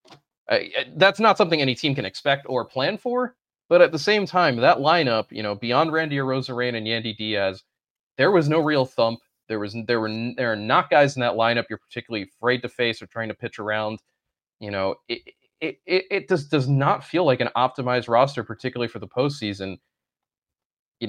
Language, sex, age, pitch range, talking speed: English, male, 20-39, 110-155 Hz, 200 wpm